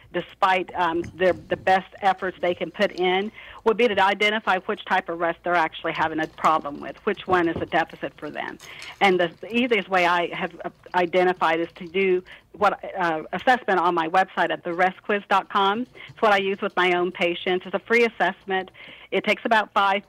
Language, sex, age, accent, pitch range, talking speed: English, female, 50-69, American, 180-220 Hz, 195 wpm